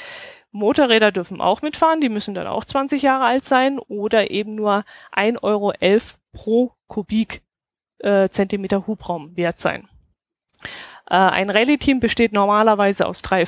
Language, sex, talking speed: German, female, 135 wpm